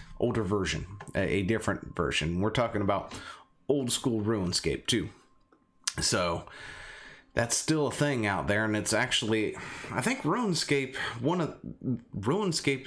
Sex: male